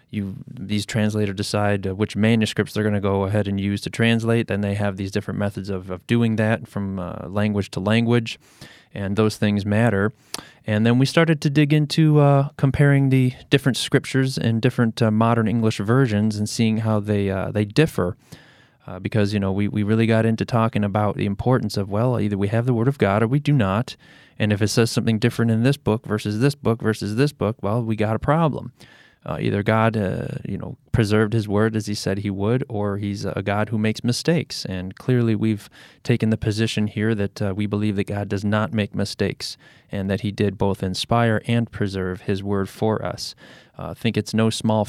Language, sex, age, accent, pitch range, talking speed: English, male, 20-39, American, 100-115 Hz, 215 wpm